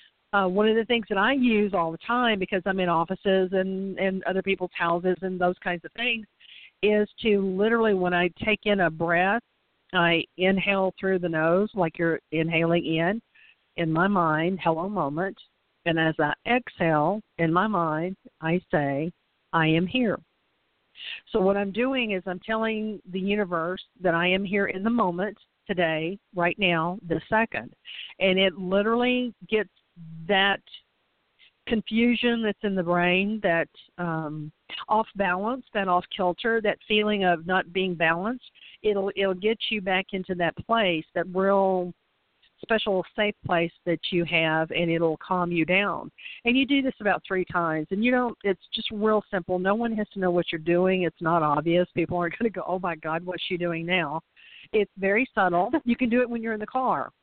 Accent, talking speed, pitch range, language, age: American, 185 wpm, 170-210 Hz, English, 50-69